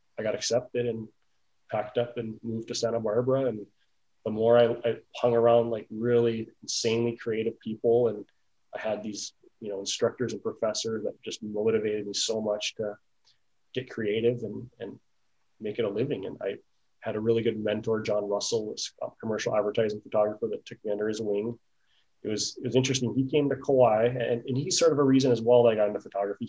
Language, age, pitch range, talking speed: English, 20-39, 110-130 Hz, 205 wpm